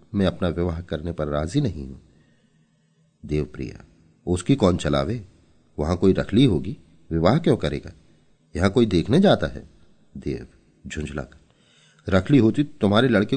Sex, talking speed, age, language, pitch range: male, 135 wpm, 40-59, Hindi, 80-100 Hz